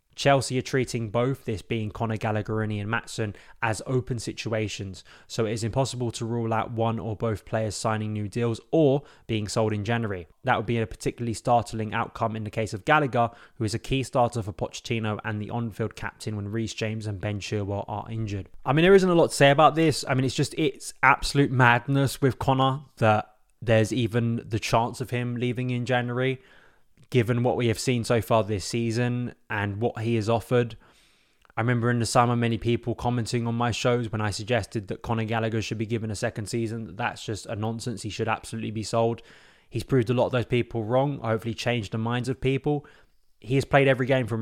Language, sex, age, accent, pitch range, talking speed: English, male, 20-39, British, 110-125 Hz, 215 wpm